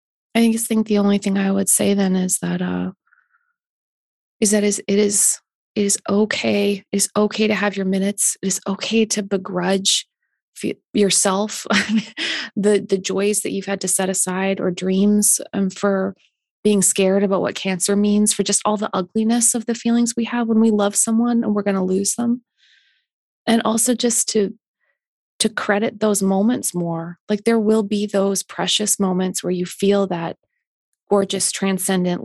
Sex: female